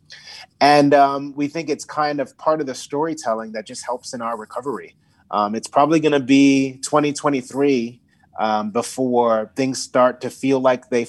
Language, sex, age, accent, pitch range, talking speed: English, male, 30-49, American, 120-145 Hz, 175 wpm